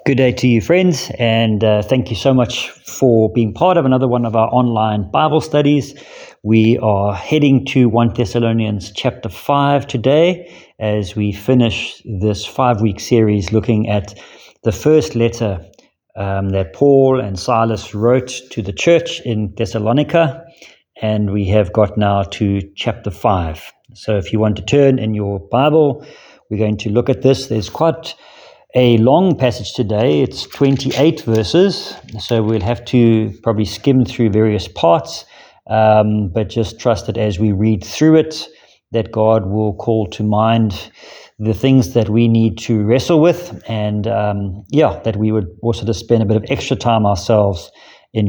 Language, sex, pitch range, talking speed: English, male, 105-130 Hz, 165 wpm